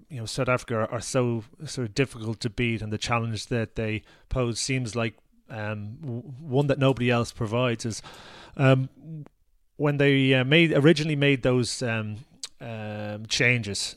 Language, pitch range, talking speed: English, 115-145 Hz, 165 wpm